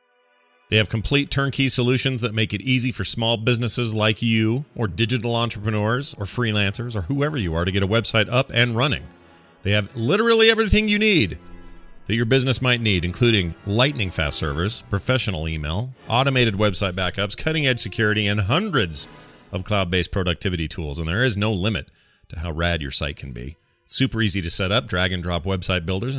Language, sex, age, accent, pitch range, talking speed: English, male, 40-59, American, 95-135 Hz, 185 wpm